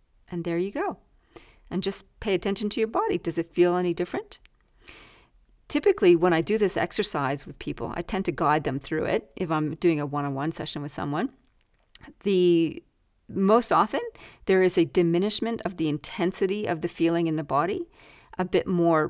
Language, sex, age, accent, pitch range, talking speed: English, female, 40-59, American, 165-210 Hz, 180 wpm